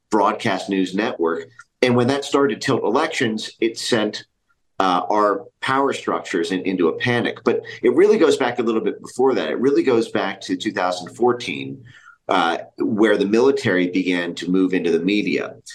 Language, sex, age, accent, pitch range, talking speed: English, male, 40-59, American, 90-120 Hz, 175 wpm